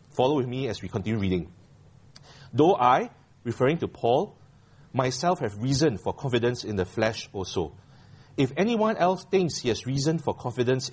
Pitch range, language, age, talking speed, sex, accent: 120-155 Hz, English, 30-49, 165 wpm, male, Malaysian